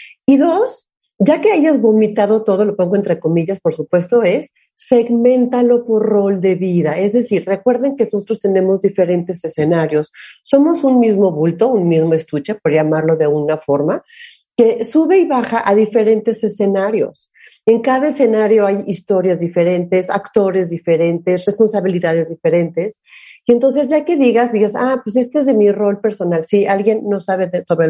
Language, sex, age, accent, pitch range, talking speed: Spanish, female, 40-59, Mexican, 180-245 Hz, 160 wpm